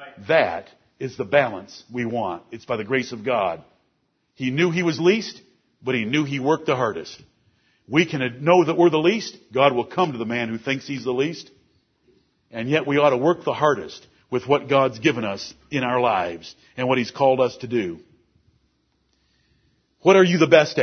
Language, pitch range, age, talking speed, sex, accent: English, 125-195 Hz, 50-69, 200 wpm, male, American